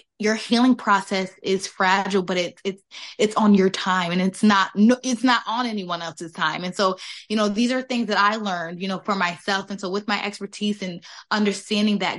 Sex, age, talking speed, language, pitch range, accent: female, 20-39, 210 wpm, English, 185-215 Hz, American